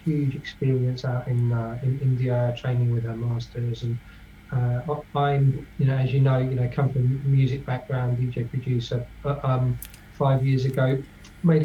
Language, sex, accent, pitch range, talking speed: English, male, British, 125-145 Hz, 170 wpm